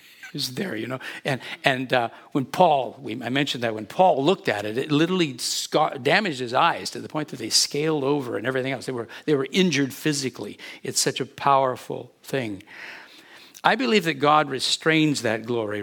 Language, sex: English, male